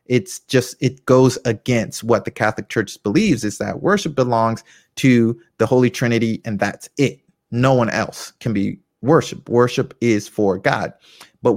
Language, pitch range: English, 105-140 Hz